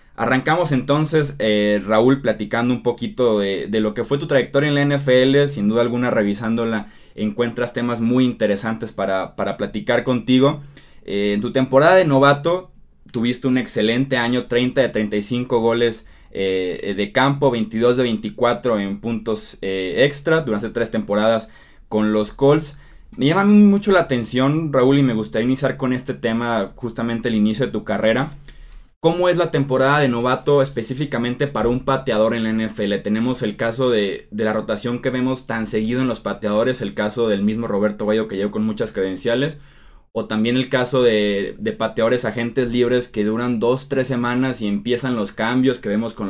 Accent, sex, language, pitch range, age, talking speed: Mexican, male, Spanish, 110-130 Hz, 20-39, 180 wpm